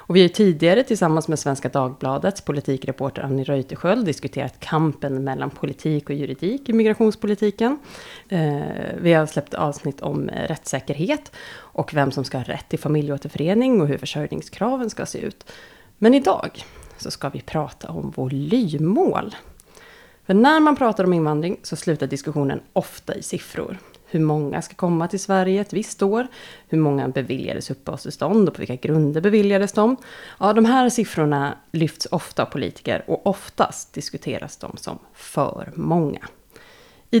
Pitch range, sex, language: 145-215 Hz, female, Swedish